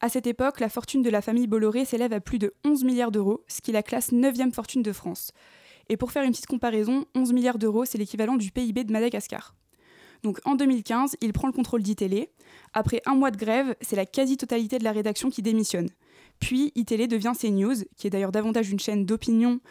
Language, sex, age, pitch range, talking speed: French, female, 20-39, 215-250 Hz, 215 wpm